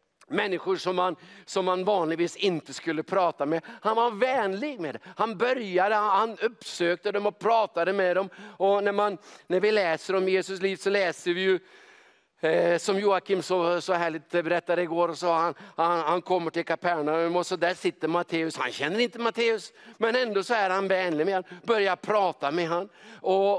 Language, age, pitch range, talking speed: English, 50-69, 170-210 Hz, 190 wpm